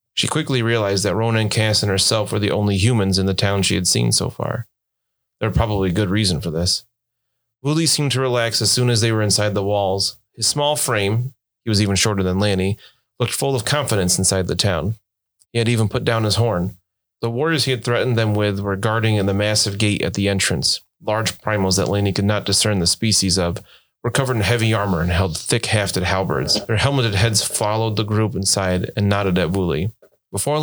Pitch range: 95-115 Hz